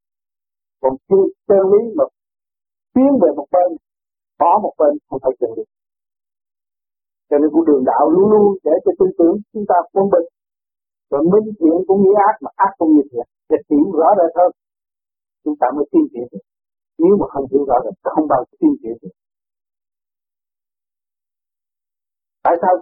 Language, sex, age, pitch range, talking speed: Vietnamese, male, 50-69, 155-220 Hz, 180 wpm